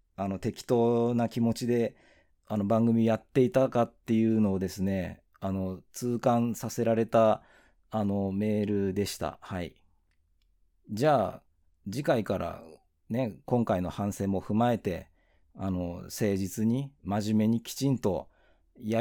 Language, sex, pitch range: Japanese, male, 85-125 Hz